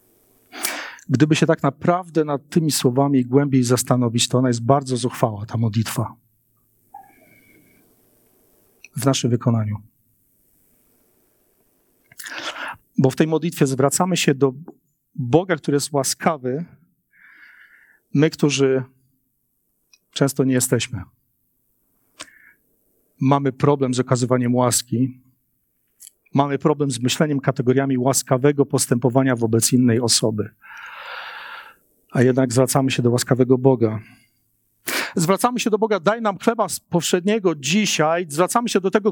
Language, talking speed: Polish, 110 wpm